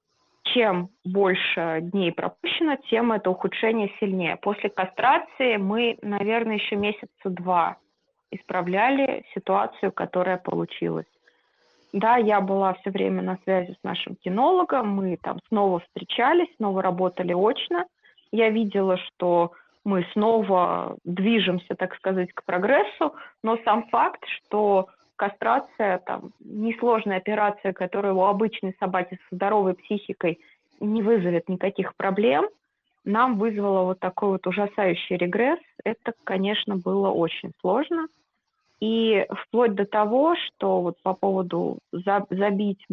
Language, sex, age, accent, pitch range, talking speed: Russian, female, 20-39, native, 185-225 Hz, 120 wpm